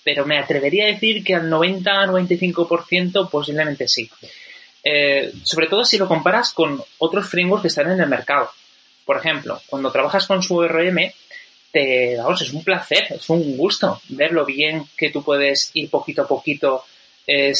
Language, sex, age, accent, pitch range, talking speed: Spanish, male, 30-49, Spanish, 135-180 Hz, 165 wpm